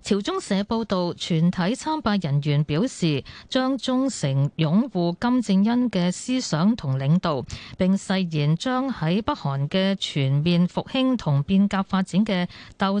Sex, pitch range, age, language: female, 160-225 Hz, 20-39, Chinese